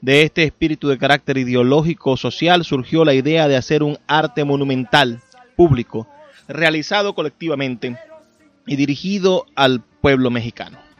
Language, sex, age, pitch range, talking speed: Spanish, male, 30-49, 125-160 Hz, 125 wpm